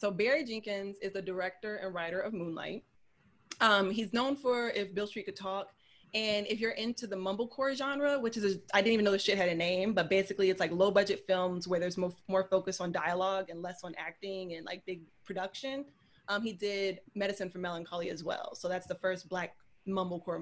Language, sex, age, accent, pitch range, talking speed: English, female, 20-39, American, 185-225 Hz, 215 wpm